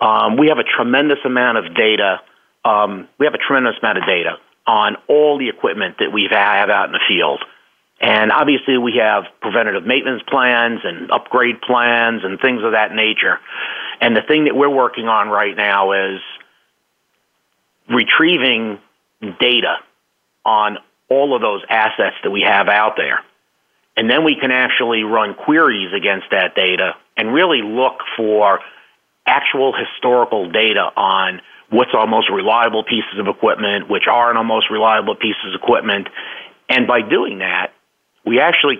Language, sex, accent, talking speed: English, male, American, 160 wpm